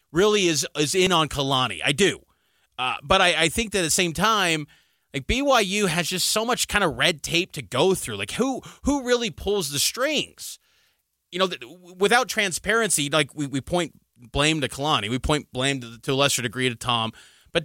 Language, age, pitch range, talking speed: English, 30-49, 155-215 Hz, 205 wpm